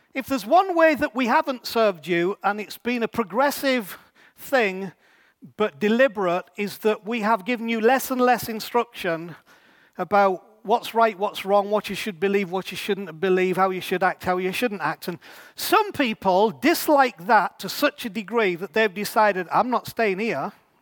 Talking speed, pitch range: 185 wpm, 190-240 Hz